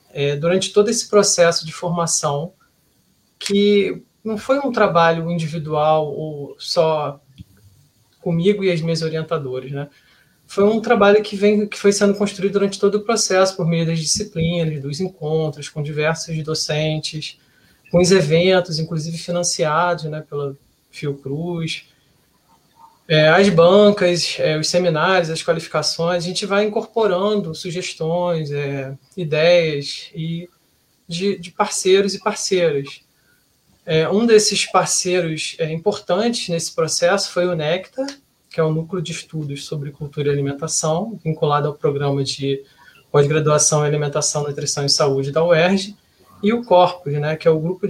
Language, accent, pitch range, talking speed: Portuguese, Brazilian, 155-190 Hz, 145 wpm